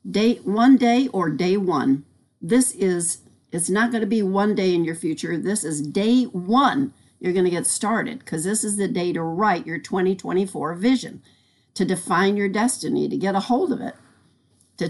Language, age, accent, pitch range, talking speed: English, 60-79, American, 175-225 Hz, 195 wpm